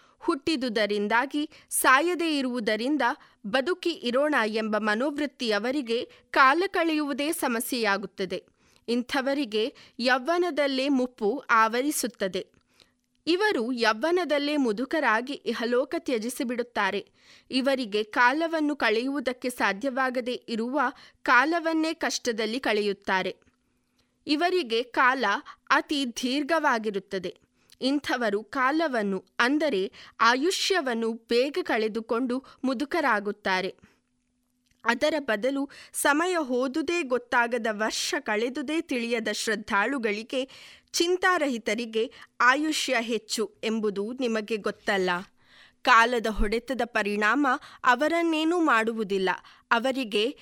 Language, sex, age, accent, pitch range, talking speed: Kannada, female, 20-39, native, 220-295 Hz, 70 wpm